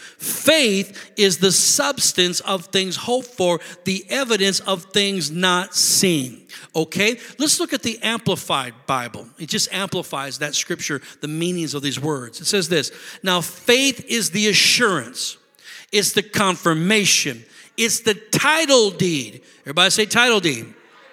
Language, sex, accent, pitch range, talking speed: English, male, American, 175-240 Hz, 140 wpm